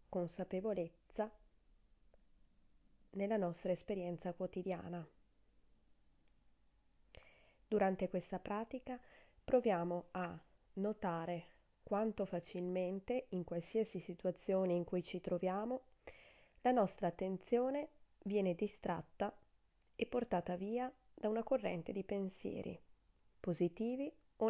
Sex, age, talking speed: female, 20-39, 85 wpm